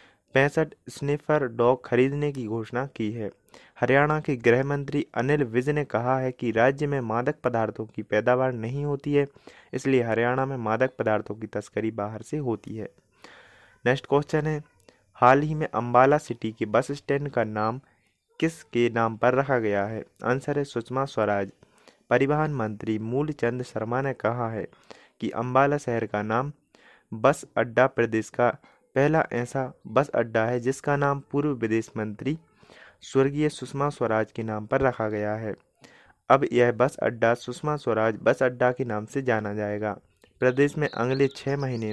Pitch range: 110-140 Hz